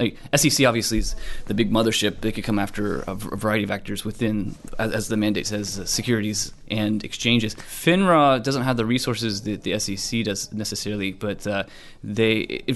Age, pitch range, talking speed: 20-39, 105-120 Hz, 195 wpm